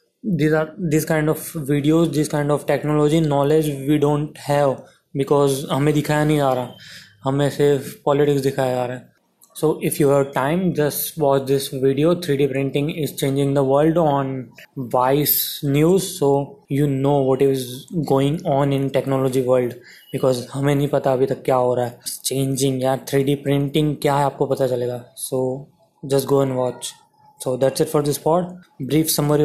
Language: Hindi